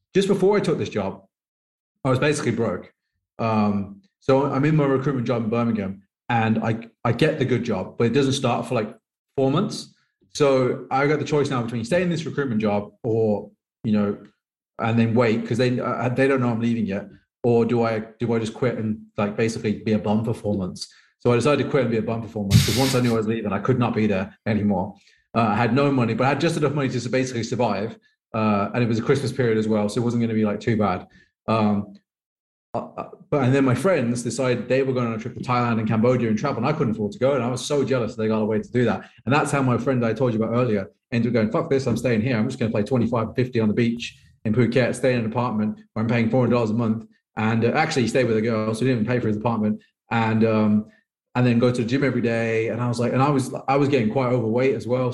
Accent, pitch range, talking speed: British, 110-130 Hz, 270 wpm